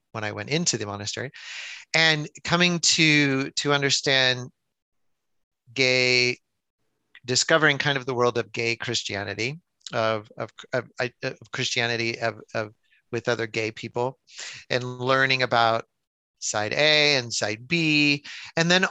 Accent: American